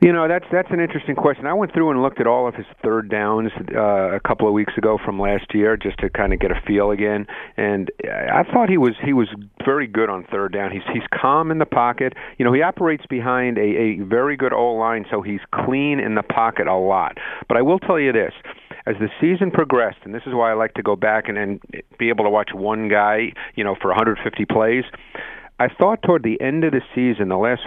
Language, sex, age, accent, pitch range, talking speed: English, male, 40-59, American, 105-130 Hz, 245 wpm